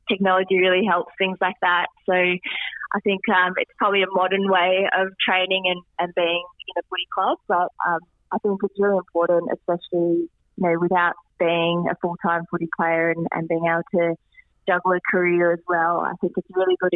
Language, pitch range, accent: English, 170-185 Hz, Australian